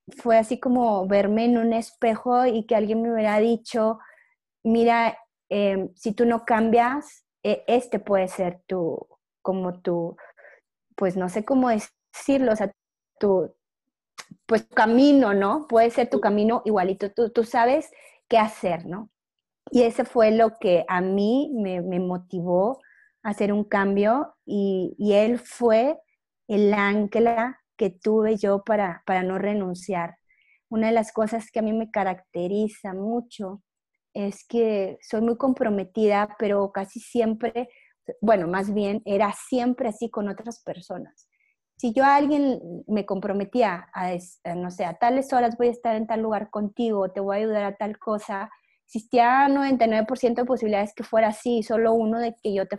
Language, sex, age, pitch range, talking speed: Spanish, female, 30-49, 200-240 Hz, 160 wpm